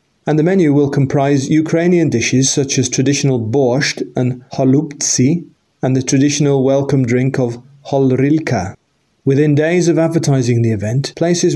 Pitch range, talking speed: 130-155 Hz, 140 wpm